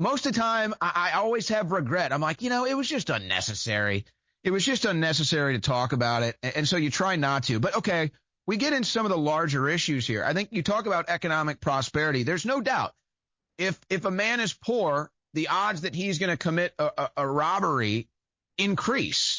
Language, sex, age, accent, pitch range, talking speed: English, male, 30-49, American, 135-185 Hz, 215 wpm